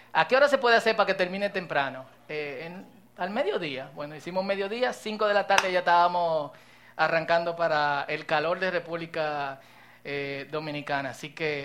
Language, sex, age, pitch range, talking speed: Spanish, male, 20-39, 165-220 Hz, 165 wpm